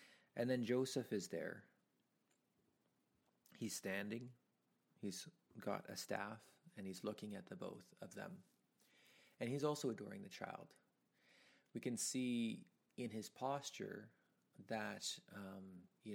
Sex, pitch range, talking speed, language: male, 100-115 Hz, 125 wpm, English